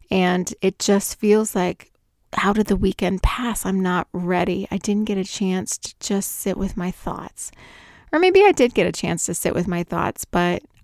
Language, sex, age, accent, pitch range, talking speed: English, female, 30-49, American, 180-230 Hz, 205 wpm